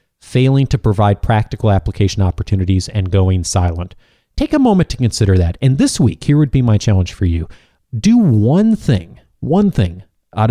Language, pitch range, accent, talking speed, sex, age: English, 100-130 Hz, American, 175 wpm, male, 30-49